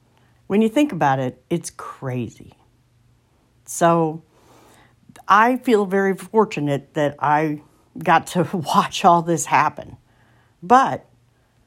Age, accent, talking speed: 50-69, American, 110 wpm